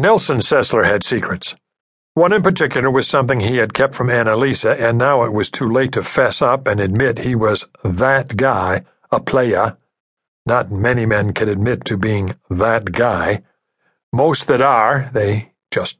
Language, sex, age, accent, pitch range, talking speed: English, male, 60-79, American, 110-145 Hz, 170 wpm